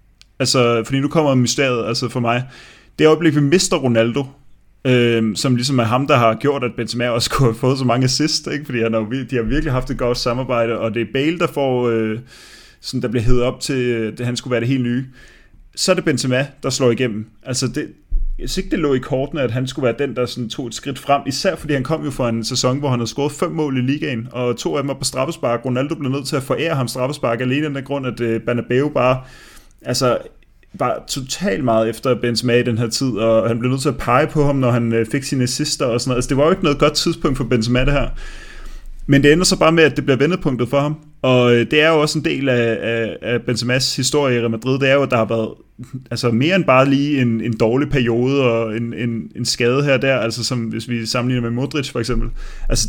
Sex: male